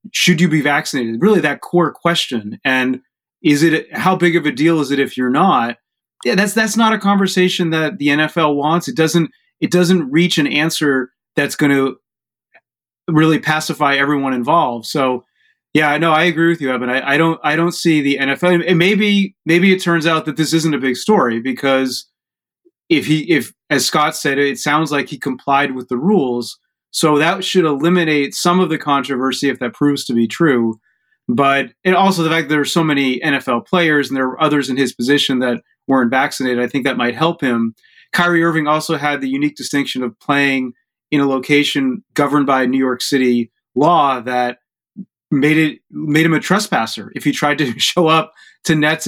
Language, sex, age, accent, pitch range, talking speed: English, male, 30-49, American, 135-170 Hz, 200 wpm